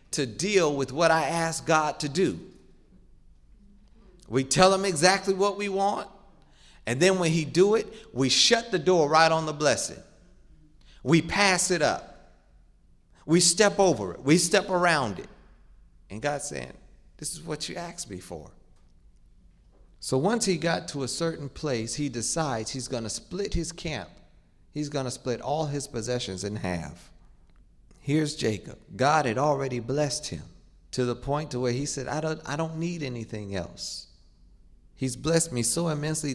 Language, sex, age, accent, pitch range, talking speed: English, male, 40-59, American, 110-165 Hz, 170 wpm